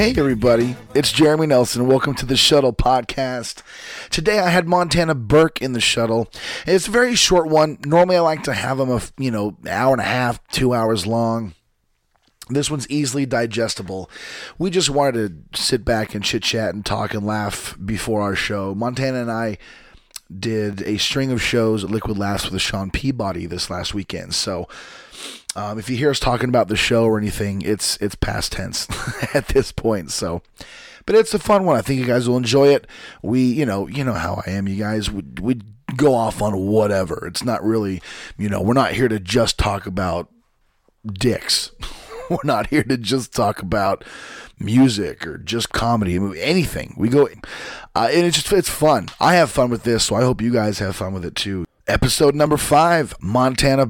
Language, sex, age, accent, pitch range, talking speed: English, male, 30-49, American, 105-135 Hz, 195 wpm